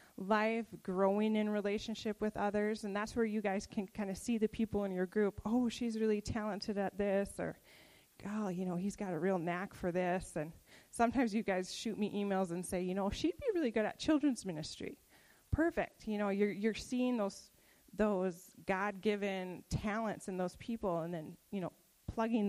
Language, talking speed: English, 195 wpm